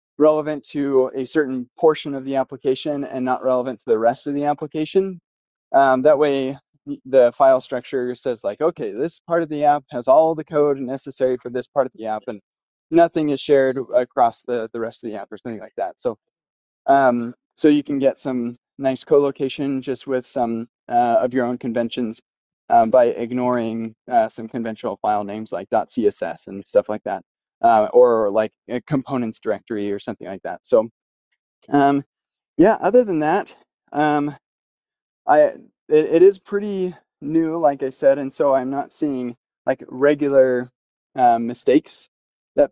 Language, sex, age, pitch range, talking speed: English, male, 20-39, 120-150 Hz, 175 wpm